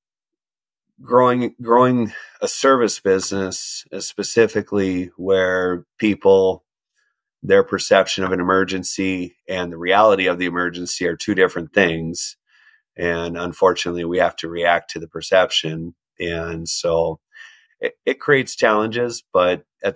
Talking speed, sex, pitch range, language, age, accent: 125 wpm, male, 85-95 Hz, English, 30-49, American